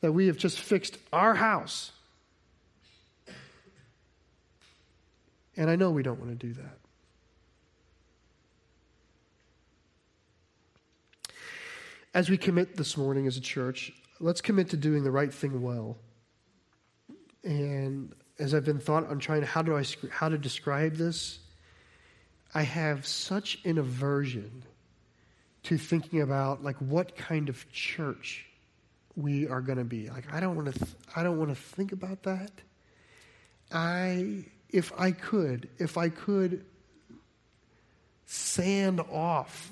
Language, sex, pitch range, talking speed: English, male, 130-190 Hz, 130 wpm